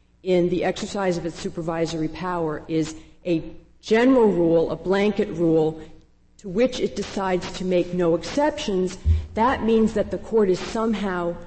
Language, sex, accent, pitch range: English, female, American, 170-205 Hz